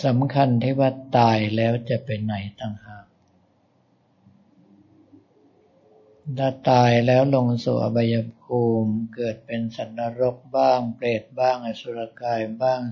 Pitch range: 110-130 Hz